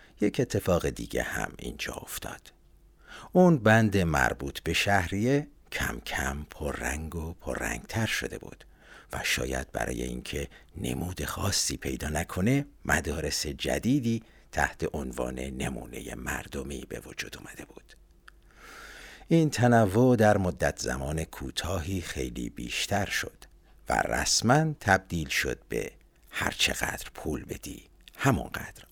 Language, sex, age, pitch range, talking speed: Persian, male, 60-79, 70-110 Hz, 115 wpm